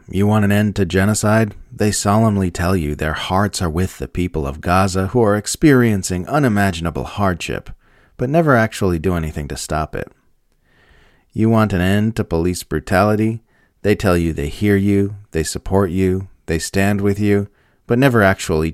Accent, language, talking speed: American, English, 175 wpm